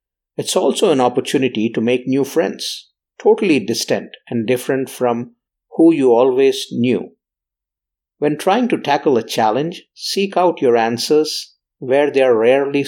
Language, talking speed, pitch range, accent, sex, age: English, 145 wpm, 125-205 Hz, Indian, male, 50-69